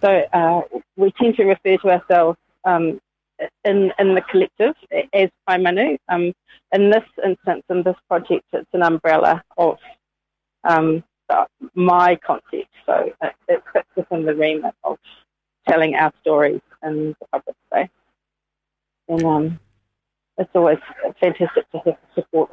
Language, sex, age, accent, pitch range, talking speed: English, female, 30-49, British, 160-195 Hz, 145 wpm